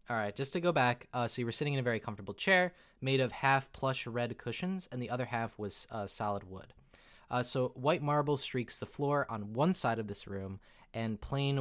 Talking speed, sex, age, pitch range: 225 wpm, male, 20-39, 110-155 Hz